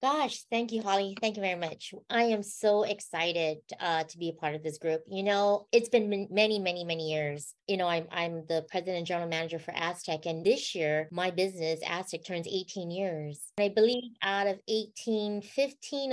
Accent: American